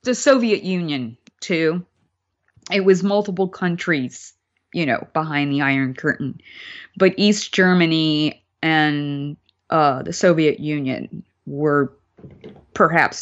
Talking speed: 110 wpm